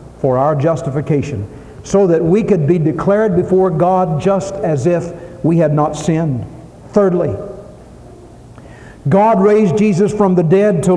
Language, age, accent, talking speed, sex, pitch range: English, 60-79, American, 140 wpm, male, 145-195 Hz